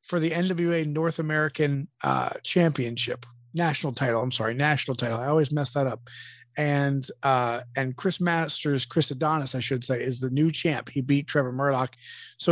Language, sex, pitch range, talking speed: English, male, 125-160 Hz, 175 wpm